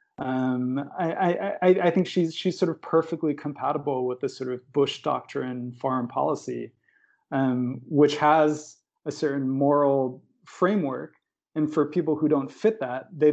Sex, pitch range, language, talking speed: male, 125-150 Hz, English, 155 wpm